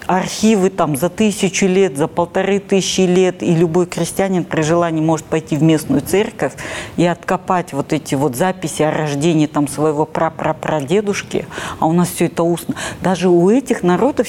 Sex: female